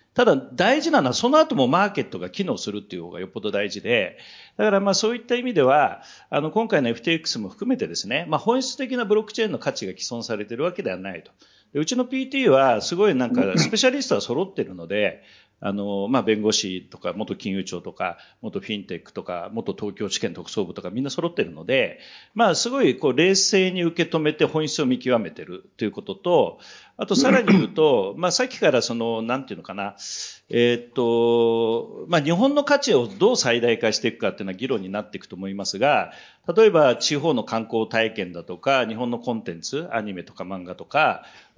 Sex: male